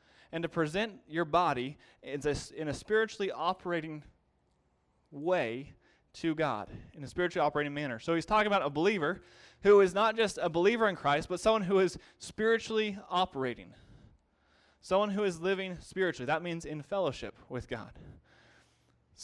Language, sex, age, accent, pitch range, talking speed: English, male, 20-39, American, 135-190 Hz, 155 wpm